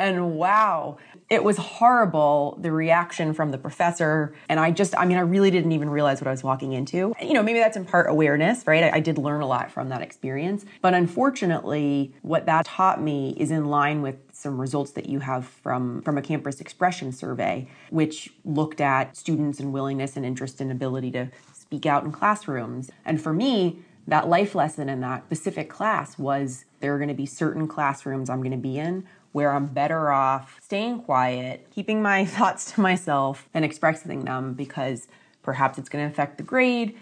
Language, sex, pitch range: English, female, 140-175 Hz